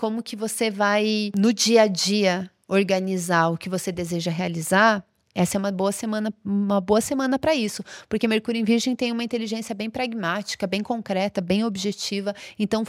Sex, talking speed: female, 175 wpm